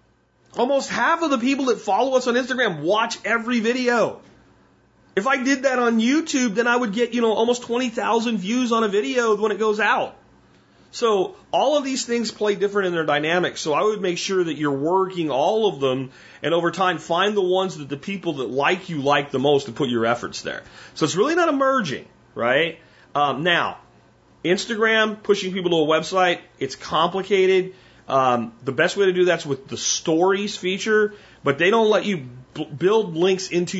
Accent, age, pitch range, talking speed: American, 40-59, 135-215 Hz, 200 wpm